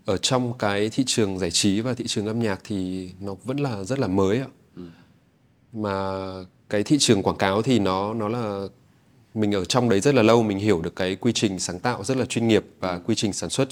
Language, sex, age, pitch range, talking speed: Vietnamese, male, 20-39, 95-125 Hz, 235 wpm